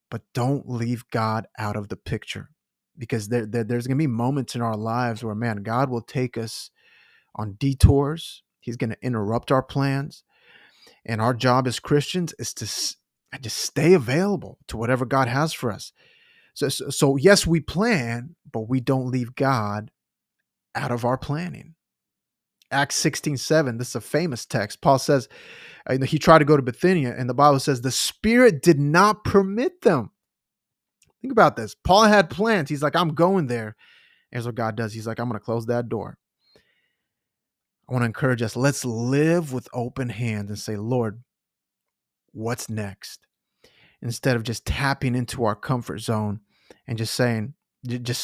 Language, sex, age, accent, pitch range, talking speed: English, male, 30-49, American, 115-150 Hz, 175 wpm